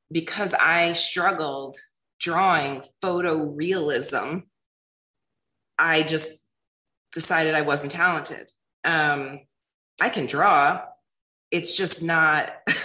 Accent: American